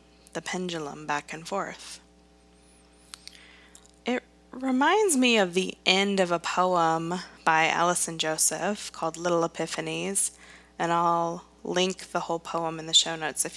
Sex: female